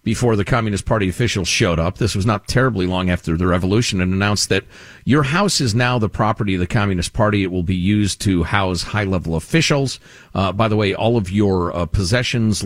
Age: 40-59